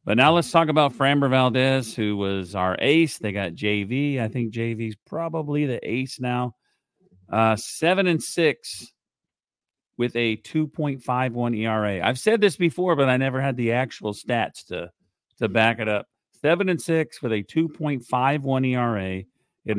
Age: 40-59